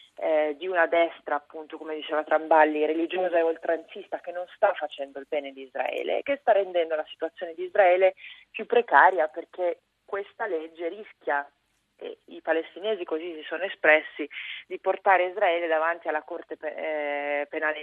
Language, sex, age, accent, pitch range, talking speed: Italian, female, 30-49, native, 155-195 Hz, 155 wpm